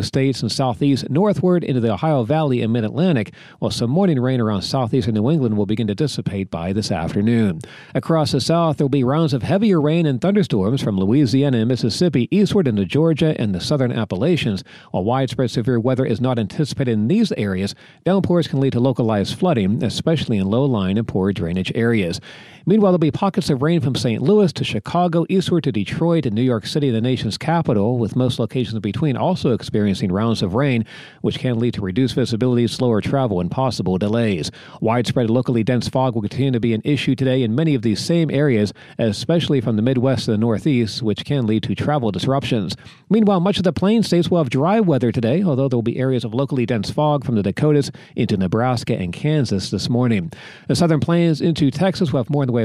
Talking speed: 210 wpm